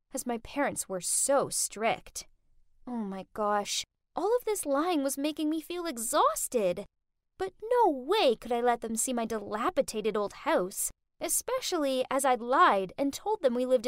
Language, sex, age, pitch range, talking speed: English, female, 10-29, 215-315 Hz, 165 wpm